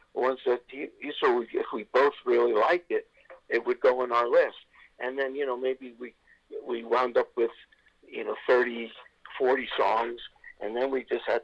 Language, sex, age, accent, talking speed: English, male, 50-69, American, 185 wpm